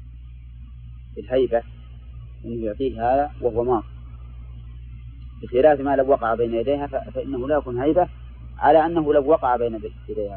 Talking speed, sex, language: 125 wpm, male, Arabic